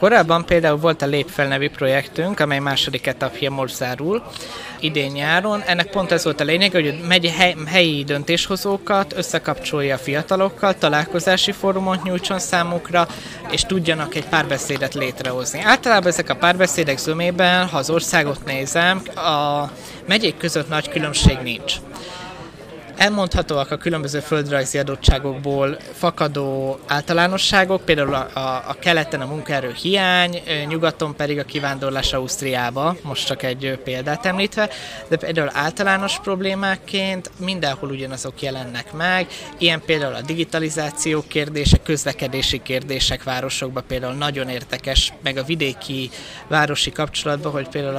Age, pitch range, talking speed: 20-39, 140-175 Hz, 120 wpm